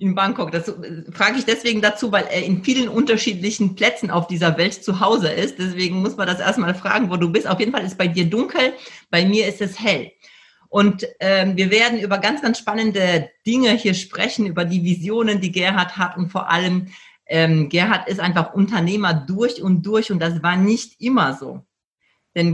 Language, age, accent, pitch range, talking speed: German, 40-59, German, 170-215 Hz, 200 wpm